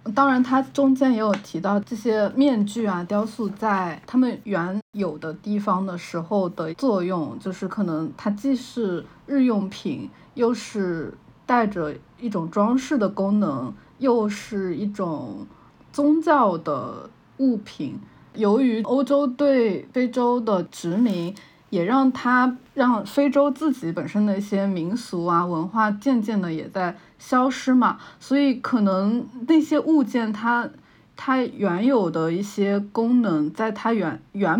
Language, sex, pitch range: Chinese, female, 185-250 Hz